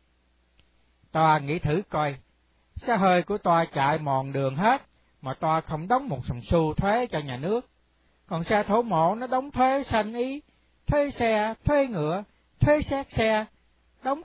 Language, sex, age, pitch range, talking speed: Vietnamese, male, 60-79, 125-205 Hz, 175 wpm